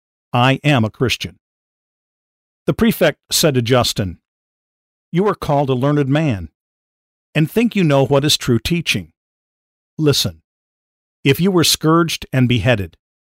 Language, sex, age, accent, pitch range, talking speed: English, male, 50-69, American, 105-155 Hz, 135 wpm